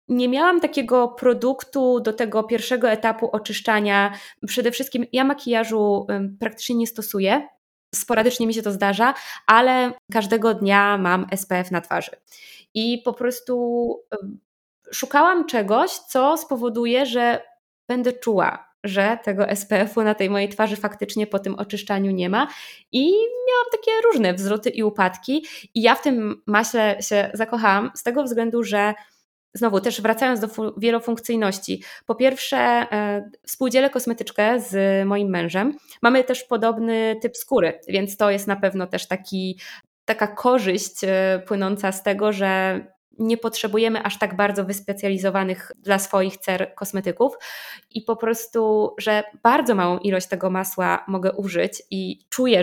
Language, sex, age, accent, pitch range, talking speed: Polish, female, 20-39, native, 200-245 Hz, 140 wpm